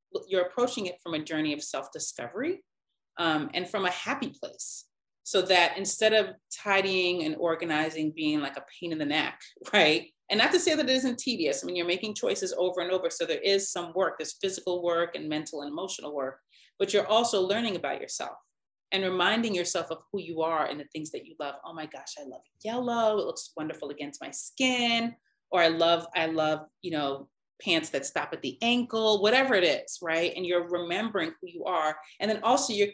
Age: 30-49